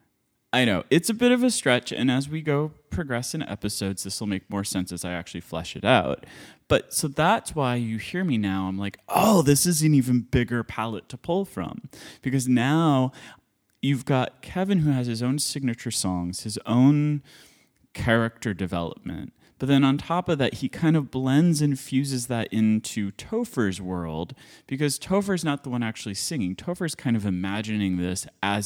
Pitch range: 100-140 Hz